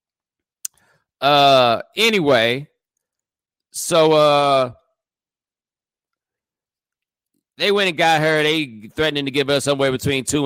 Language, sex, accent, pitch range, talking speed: English, male, American, 130-190 Hz, 100 wpm